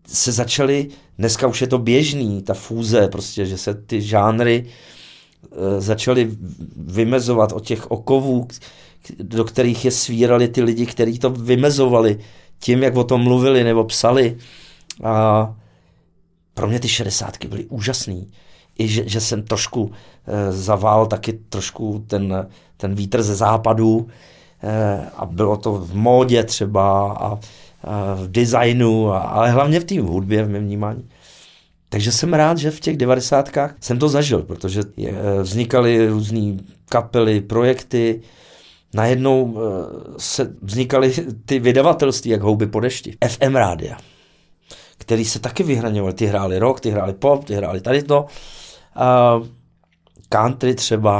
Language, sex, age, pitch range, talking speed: Czech, male, 40-59, 105-125 Hz, 135 wpm